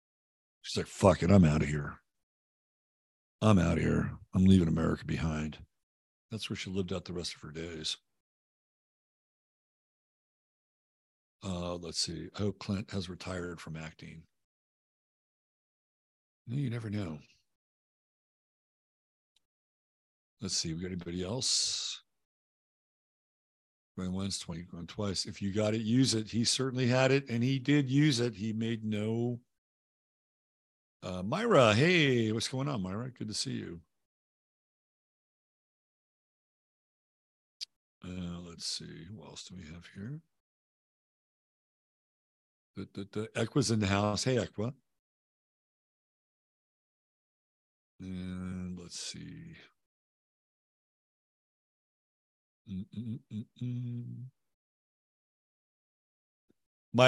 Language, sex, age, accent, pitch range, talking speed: English, male, 50-69, American, 85-120 Hz, 105 wpm